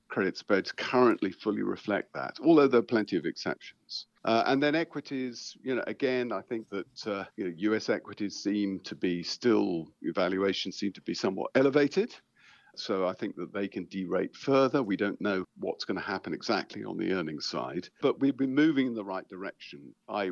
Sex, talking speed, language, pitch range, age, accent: male, 195 wpm, English, 95-130 Hz, 50-69, British